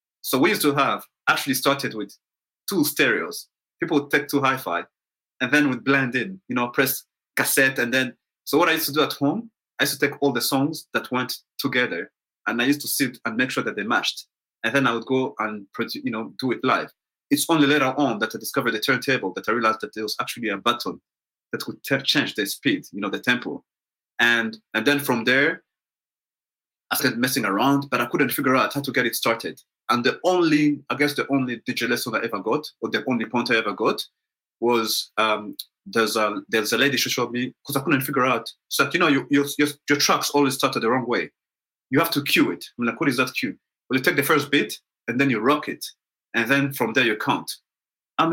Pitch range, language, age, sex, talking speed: 125-145 Hz, English, 30-49, male, 235 wpm